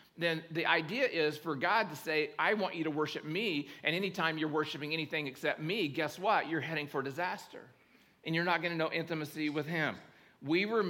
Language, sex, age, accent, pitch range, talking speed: English, male, 40-59, American, 150-180 Hz, 210 wpm